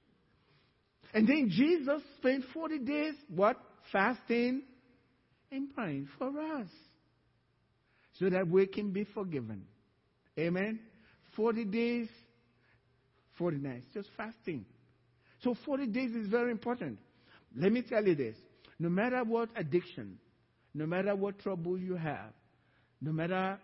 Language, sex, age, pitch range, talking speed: English, male, 50-69, 125-200 Hz, 120 wpm